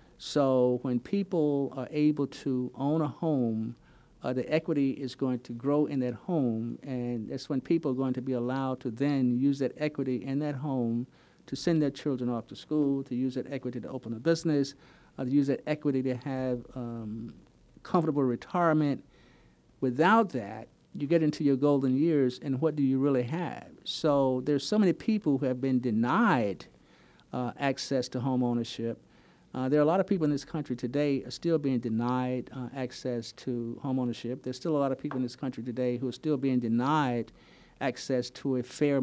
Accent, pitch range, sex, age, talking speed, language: American, 125-150 Hz, male, 50-69, 195 wpm, English